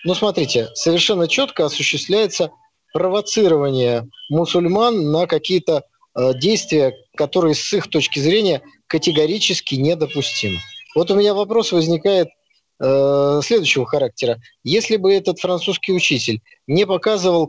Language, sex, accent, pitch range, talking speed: Russian, male, native, 150-200 Hz, 110 wpm